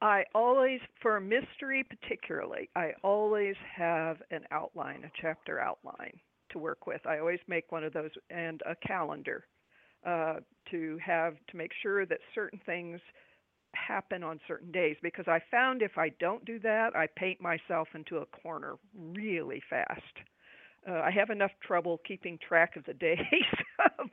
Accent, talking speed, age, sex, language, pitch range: American, 165 wpm, 50-69, female, English, 165-210 Hz